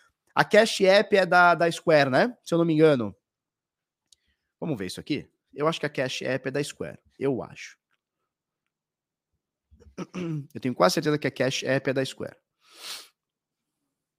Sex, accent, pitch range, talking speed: male, Brazilian, 125-160 Hz, 165 wpm